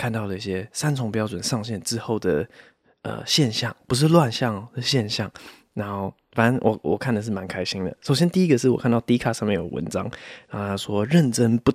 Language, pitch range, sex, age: Chinese, 100-130 Hz, male, 20-39